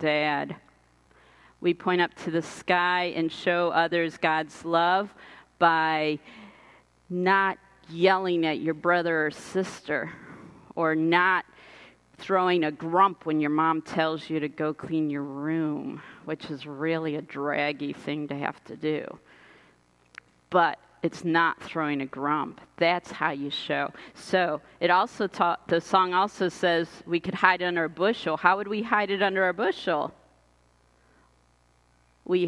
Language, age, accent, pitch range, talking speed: English, 40-59, American, 150-185 Hz, 145 wpm